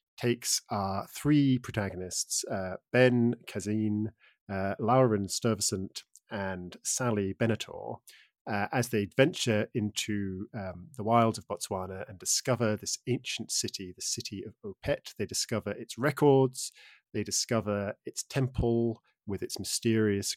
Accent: British